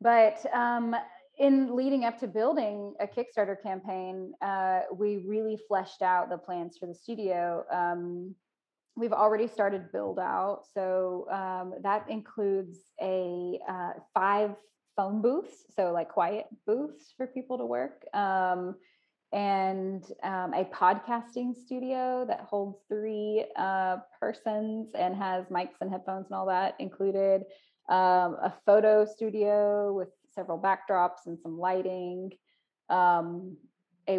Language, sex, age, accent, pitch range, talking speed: English, female, 20-39, American, 185-215 Hz, 130 wpm